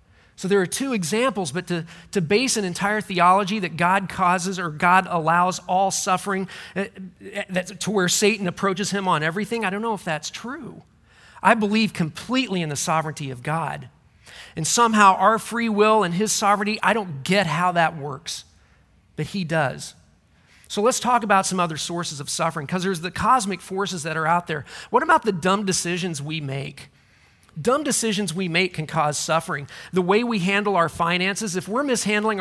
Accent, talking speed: American, 185 wpm